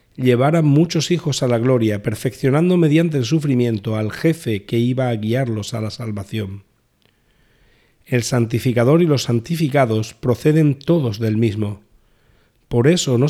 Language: Spanish